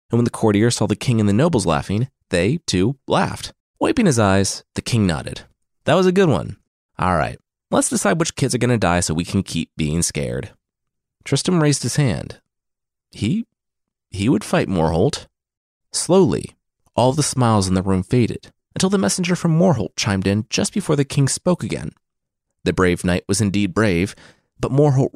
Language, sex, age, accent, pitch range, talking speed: English, male, 30-49, American, 95-150 Hz, 190 wpm